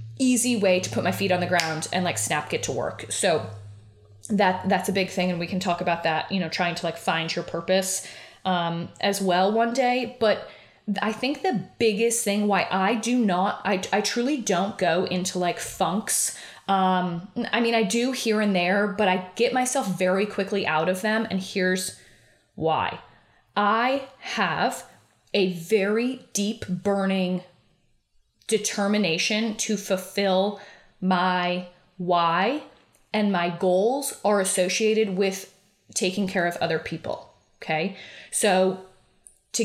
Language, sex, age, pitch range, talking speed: English, female, 20-39, 180-210 Hz, 155 wpm